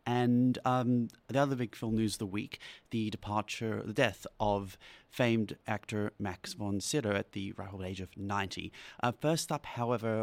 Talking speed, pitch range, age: 180 wpm, 100-120 Hz, 30-49